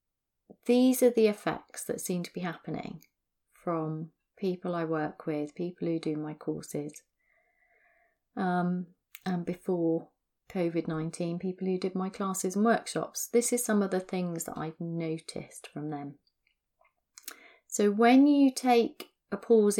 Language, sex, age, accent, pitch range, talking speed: English, female, 30-49, British, 175-225 Hz, 140 wpm